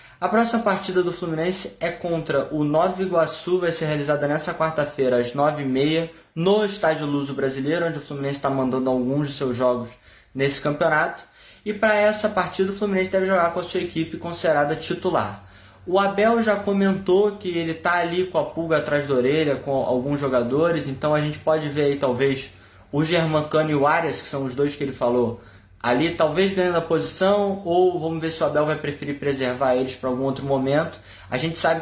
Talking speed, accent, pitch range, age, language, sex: 200 wpm, Brazilian, 140-170 Hz, 20-39, Portuguese, male